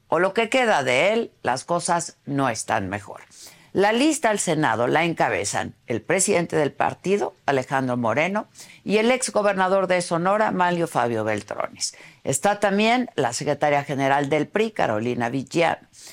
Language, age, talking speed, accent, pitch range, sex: Spanish, 50-69, 155 wpm, Mexican, 135-215 Hz, female